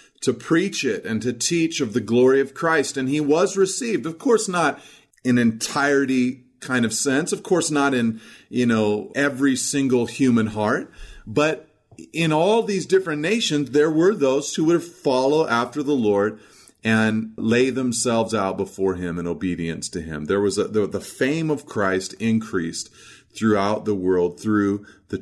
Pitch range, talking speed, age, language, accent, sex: 105-135 Hz, 165 wpm, 40-59, English, American, male